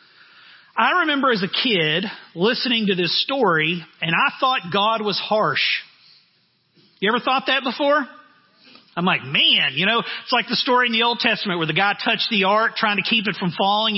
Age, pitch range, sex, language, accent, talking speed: 40-59, 185-255 Hz, male, English, American, 195 wpm